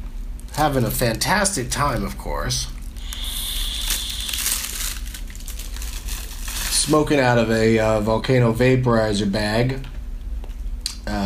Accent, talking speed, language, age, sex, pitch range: American, 80 wpm, English, 40-59, male, 75-125 Hz